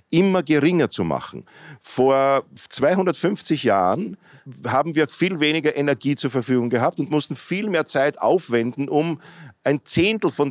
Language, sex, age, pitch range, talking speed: German, male, 50-69, 125-155 Hz, 145 wpm